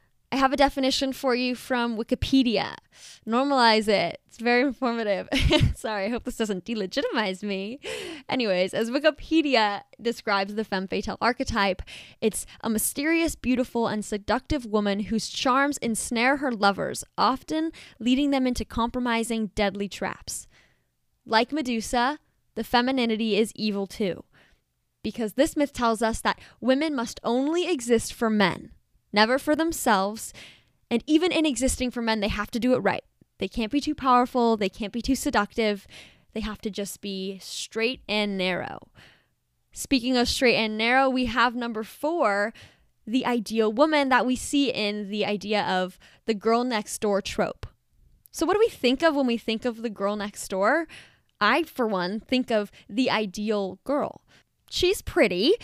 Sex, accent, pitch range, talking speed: female, American, 210-265 Hz, 160 wpm